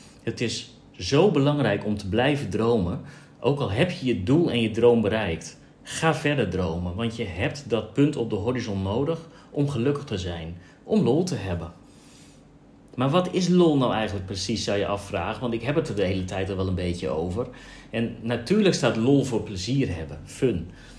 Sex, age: male, 40-59